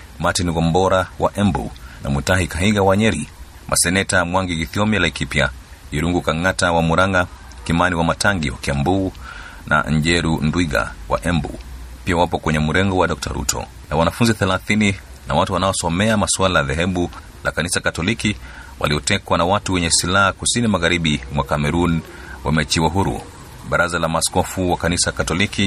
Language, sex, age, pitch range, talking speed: Swahili, male, 40-59, 75-95 Hz, 145 wpm